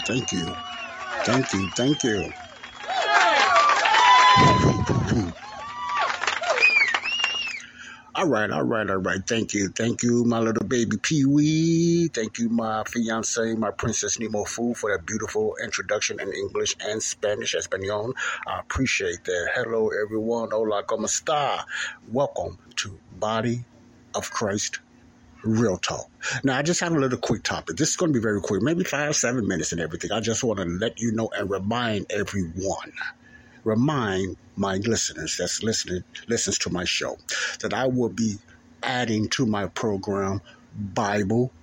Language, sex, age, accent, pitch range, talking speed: English, male, 60-79, American, 105-130 Hz, 145 wpm